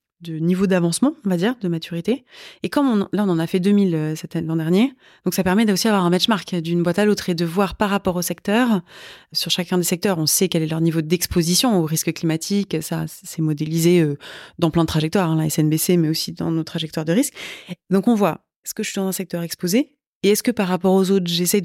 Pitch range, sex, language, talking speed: 170-205 Hz, female, French, 250 wpm